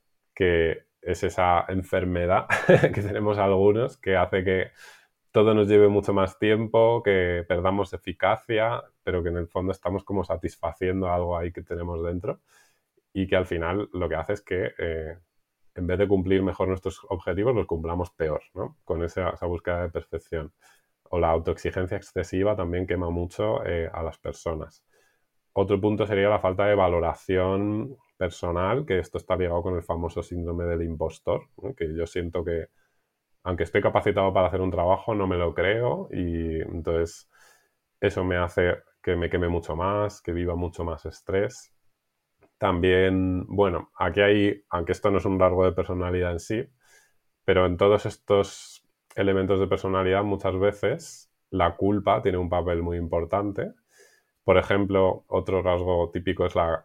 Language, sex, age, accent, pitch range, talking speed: Spanish, male, 20-39, Spanish, 85-100 Hz, 165 wpm